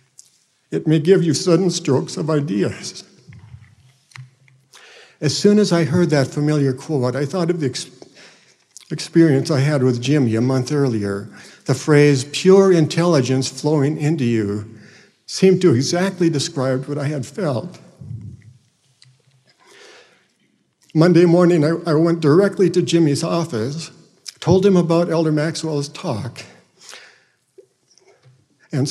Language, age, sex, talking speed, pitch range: English, 60-79, male, 120 wpm, 130-160 Hz